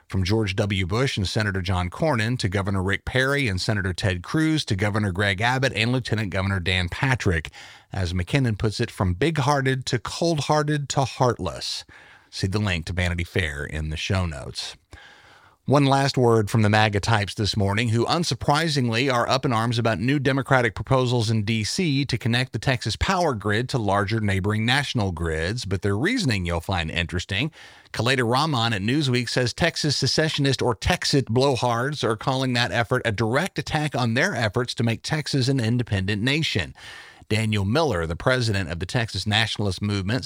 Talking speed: 175 wpm